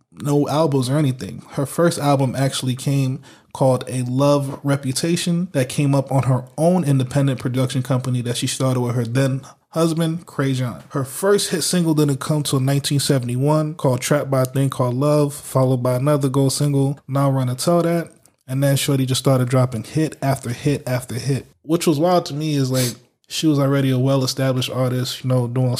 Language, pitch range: English, 130-145 Hz